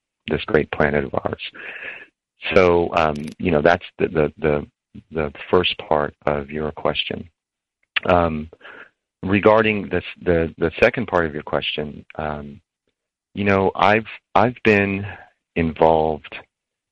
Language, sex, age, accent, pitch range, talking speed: English, male, 40-59, American, 75-95 Hz, 130 wpm